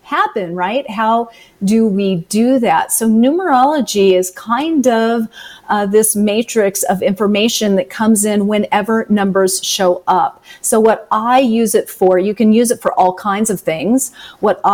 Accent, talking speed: American, 165 wpm